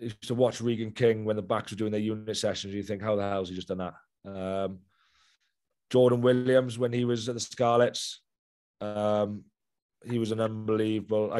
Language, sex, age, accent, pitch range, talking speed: English, male, 30-49, British, 100-115 Hz, 190 wpm